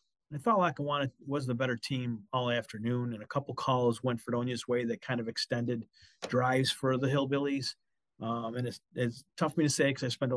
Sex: male